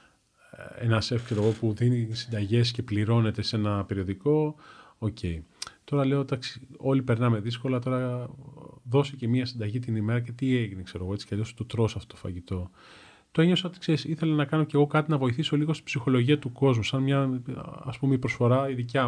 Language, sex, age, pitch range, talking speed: Greek, male, 30-49, 110-140 Hz, 180 wpm